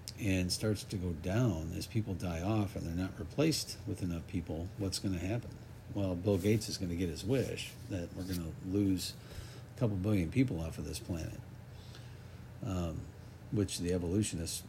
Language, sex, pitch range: English, male, 95-115 Hz